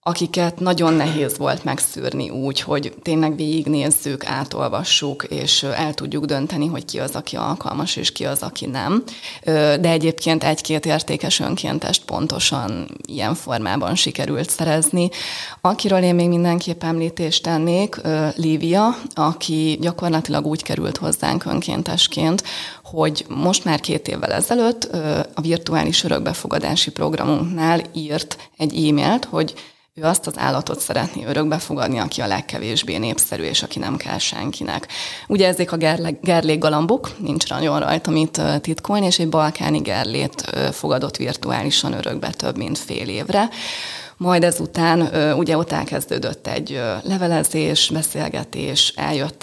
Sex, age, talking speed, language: female, 20-39, 130 wpm, Hungarian